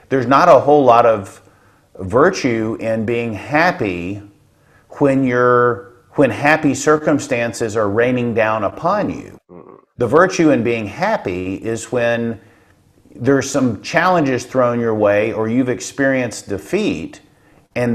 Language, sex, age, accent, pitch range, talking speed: English, male, 50-69, American, 110-140 Hz, 125 wpm